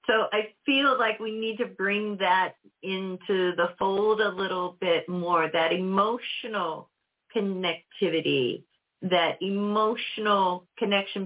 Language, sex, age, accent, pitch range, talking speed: English, female, 50-69, American, 180-220 Hz, 115 wpm